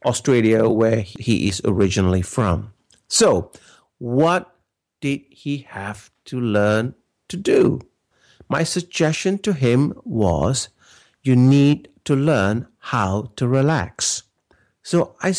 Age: 50-69